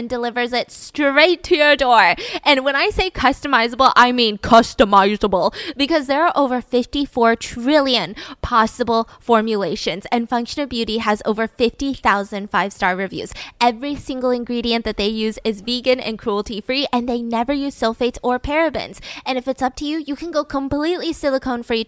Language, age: English, 10-29